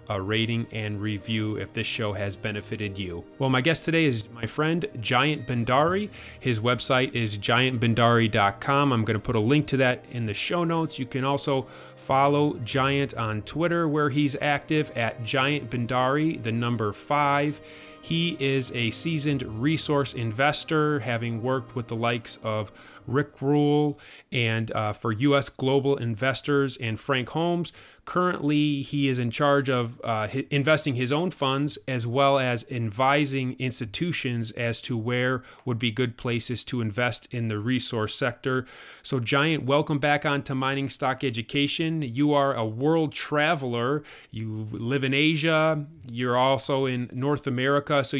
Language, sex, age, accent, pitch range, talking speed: English, male, 30-49, American, 115-145 Hz, 160 wpm